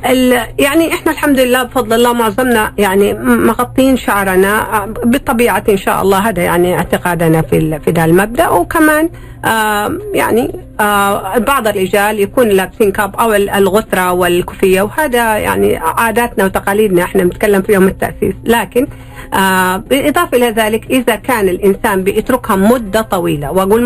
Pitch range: 205-250 Hz